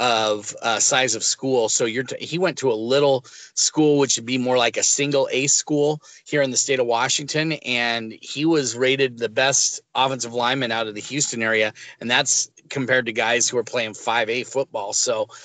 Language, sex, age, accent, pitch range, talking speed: English, male, 30-49, American, 115-140 Hz, 215 wpm